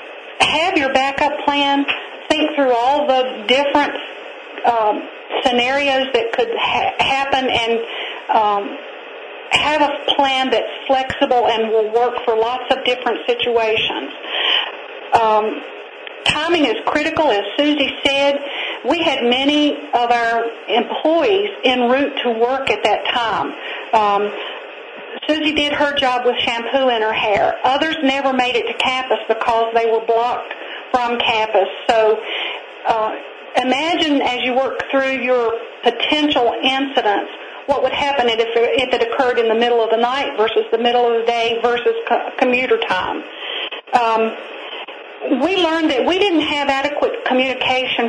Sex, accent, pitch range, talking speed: female, American, 235-300 Hz, 135 wpm